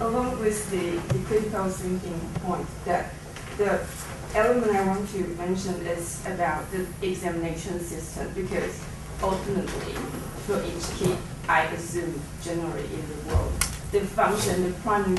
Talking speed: 135 wpm